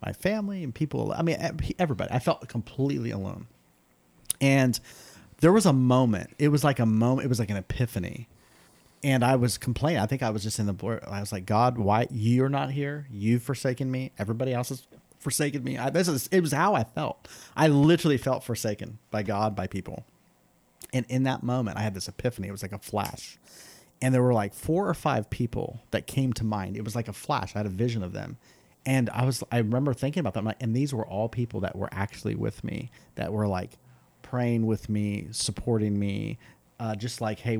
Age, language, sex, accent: 30-49, English, male, American